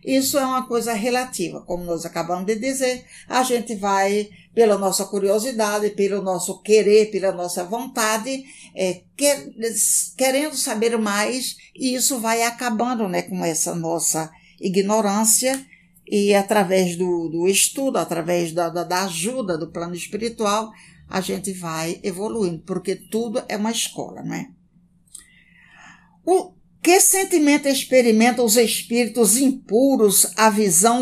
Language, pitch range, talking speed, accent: Portuguese, 180-240 Hz, 125 wpm, Brazilian